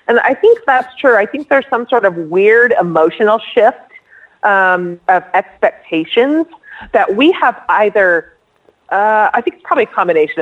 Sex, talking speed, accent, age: female, 160 wpm, American, 40-59